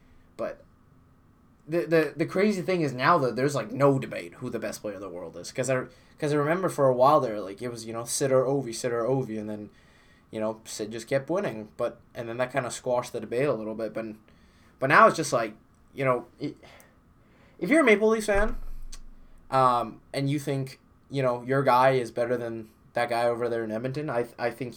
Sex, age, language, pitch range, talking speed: male, 20-39, English, 115-140 Hz, 230 wpm